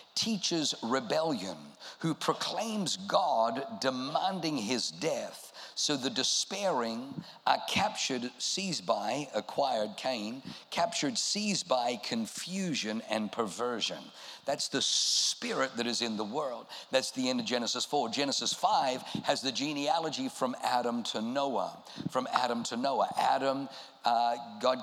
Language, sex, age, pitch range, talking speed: English, male, 50-69, 125-165 Hz, 130 wpm